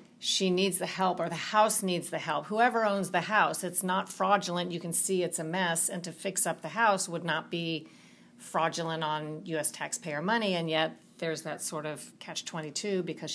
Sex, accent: female, American